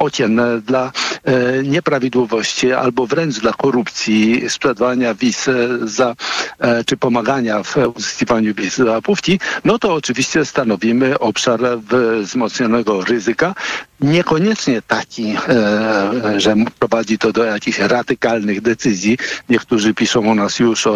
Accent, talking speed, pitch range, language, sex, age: native, 115 wpm, 110-135 Hz, Polish, male, 60-79